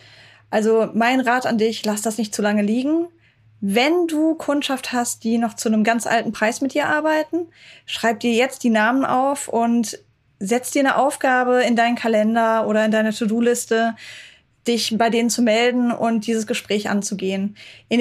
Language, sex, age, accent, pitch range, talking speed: German, female, 10-29, German, 210-245 Hz, 175 wpm